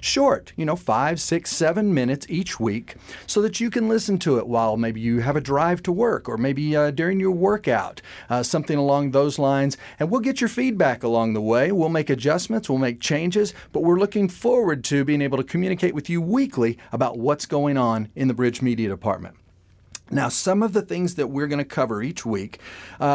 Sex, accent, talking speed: male, American, 215 wpm